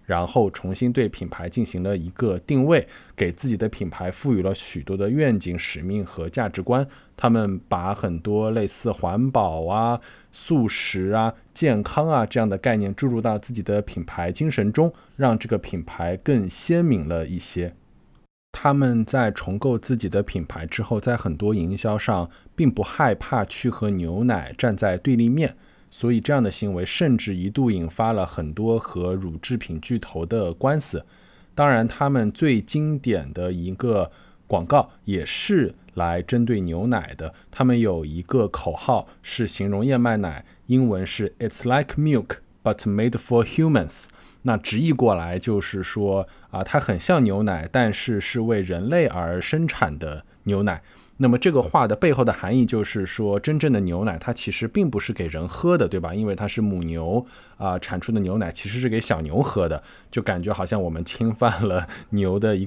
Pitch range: 90-120 Hz